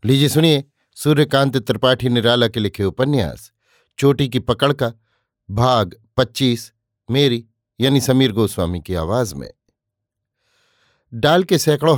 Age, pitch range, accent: 50-69, 110-135 Hz, native